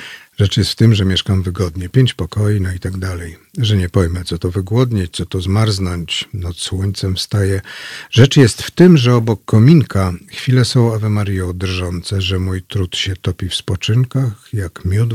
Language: Polish